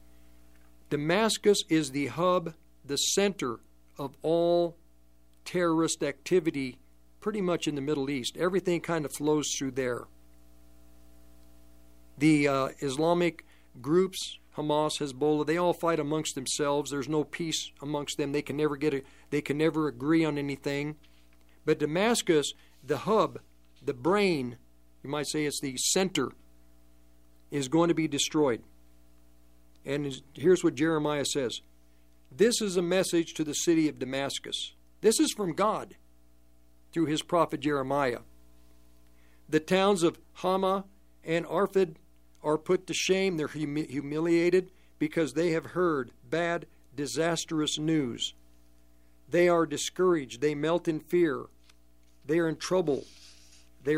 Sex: male